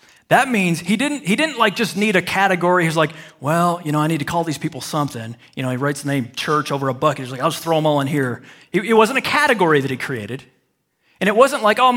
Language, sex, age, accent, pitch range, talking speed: English, male, 40-59, American, 155-230 Hz, 270 wpm